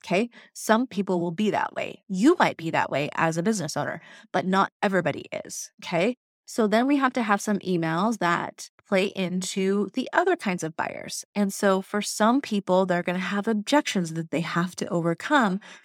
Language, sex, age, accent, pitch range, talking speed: English, female, 30-49, American, 170-210 Hz, 195 wpm